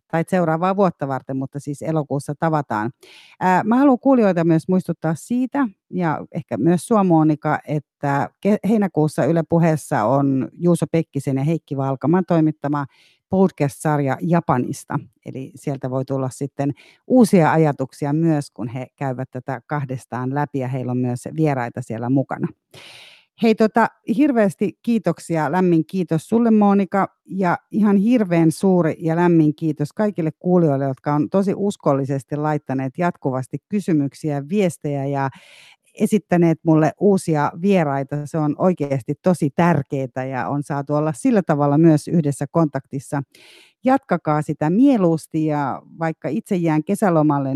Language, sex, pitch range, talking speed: Finnish, female, 140-180 Hz, 130 wpm